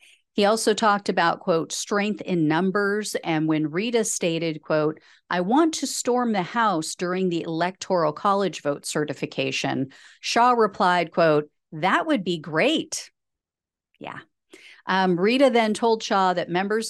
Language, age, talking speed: English, 50-69, 140 wpm